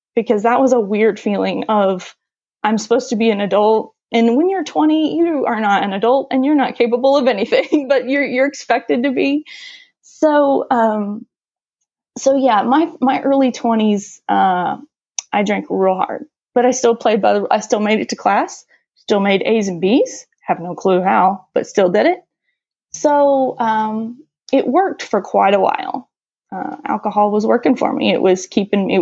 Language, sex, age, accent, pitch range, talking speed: English, female, 20-39, American, 205-275 Hz, 185 wpm